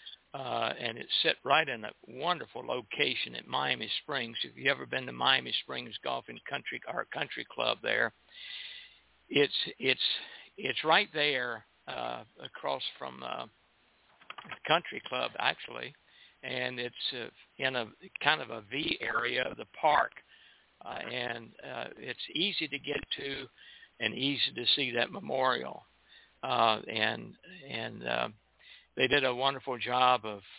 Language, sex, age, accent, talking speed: English, male, 60-79, American, 145 wpm